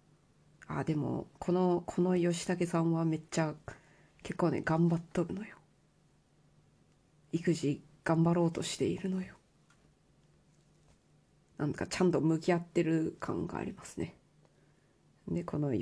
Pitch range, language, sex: 150-175 Hz, Japanese, female